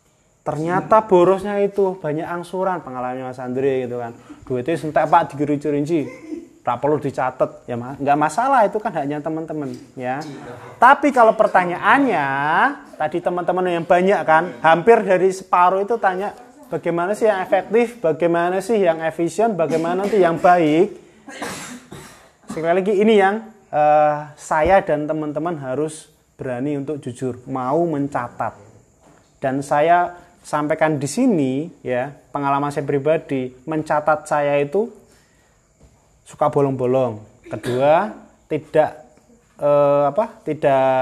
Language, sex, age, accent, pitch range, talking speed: Indonesian, male, 20-39, native, 140-185 Hz, 125 wpm